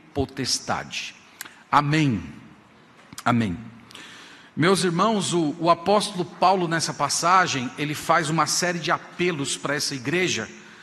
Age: 50-69